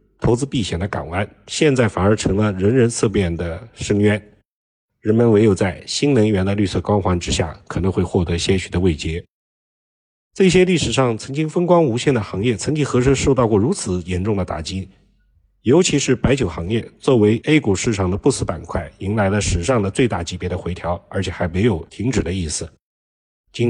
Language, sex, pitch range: Chinese, male, 95-125 Hz